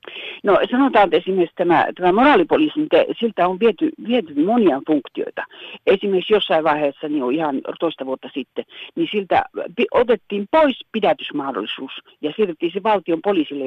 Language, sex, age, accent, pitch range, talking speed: Finnish, female, 60-79, native, 165-275 Hz, 135 wpm